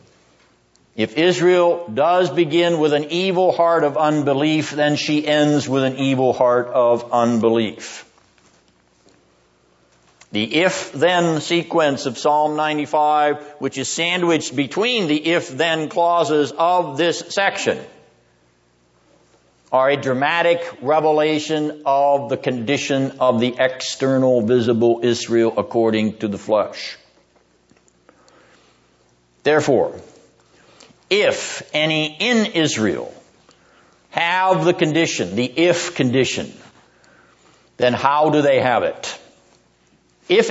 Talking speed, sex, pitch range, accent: 100 wpm, male, 100-165 Hz, American